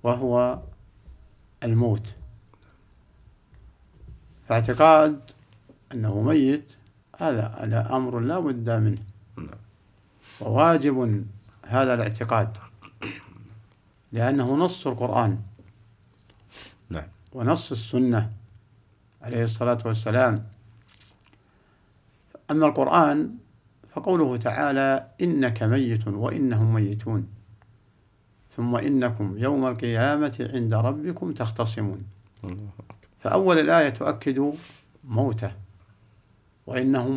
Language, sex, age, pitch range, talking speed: Arabic, male, 60-79, 105-130 Hz, 65 wpm